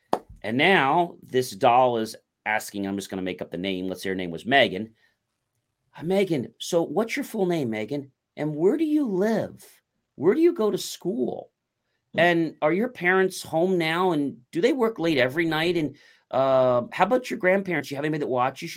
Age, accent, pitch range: 40-59, American, 120-185 Hz